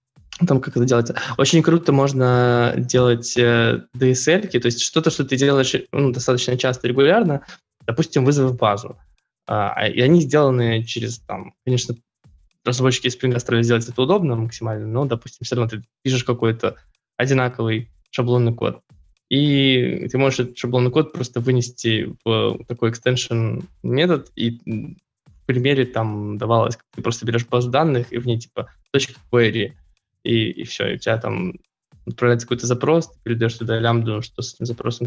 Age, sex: 20-39, male